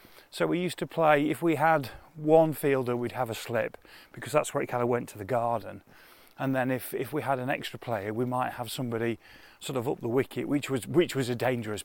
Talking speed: 245 wpm